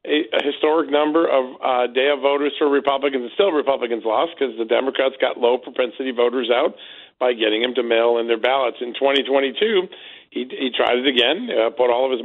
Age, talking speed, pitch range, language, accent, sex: 50-69, 205 wpm, 125-150 Hz, English, American, male